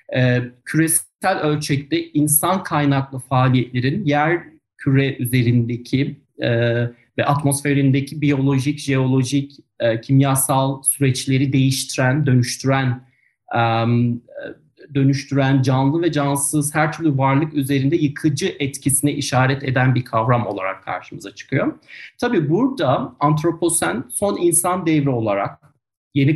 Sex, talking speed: male, 100 wpm